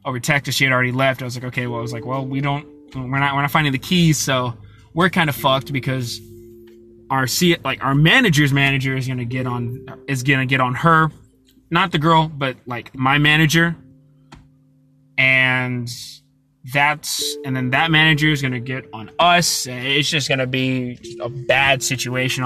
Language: English